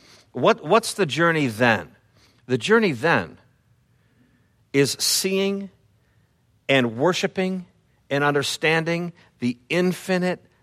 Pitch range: 120-165 Hz